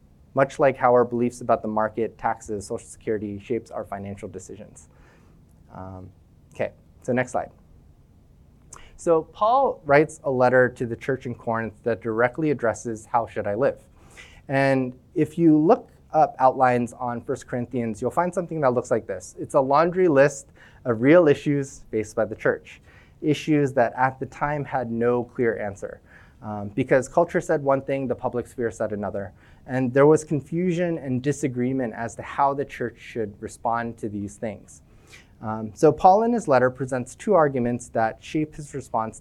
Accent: American